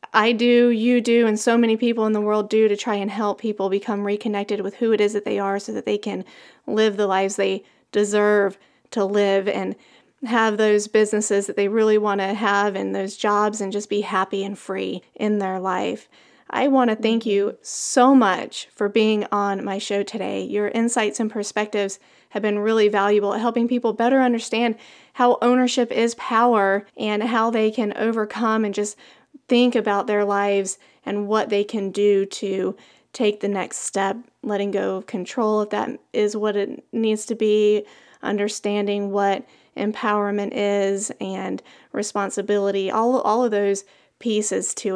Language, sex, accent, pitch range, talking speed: English, female, American, 200-225 Hz, 180 wpm